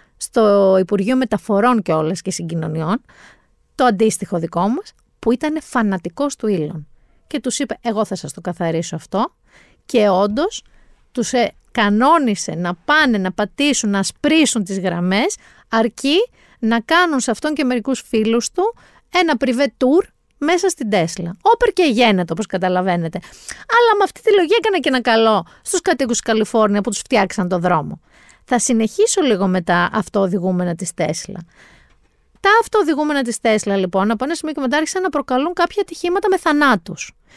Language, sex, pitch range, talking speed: Greek, female, 195-300 Hz, 160 wpm